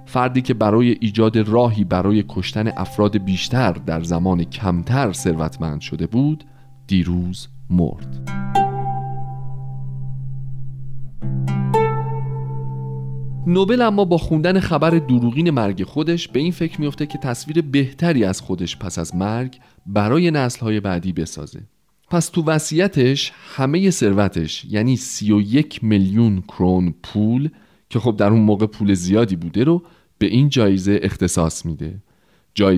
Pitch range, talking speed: 95-140 Hz, 120 wpm